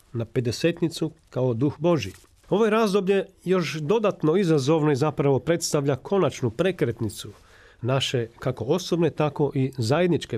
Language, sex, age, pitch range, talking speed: Croatian, male, 40-59, 125-170 Hz, 120 wpm